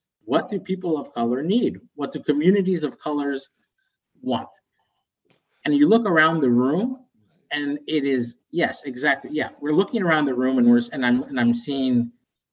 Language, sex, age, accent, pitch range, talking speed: English, male, 50-69, American, 115-140 Hz, 175 wpm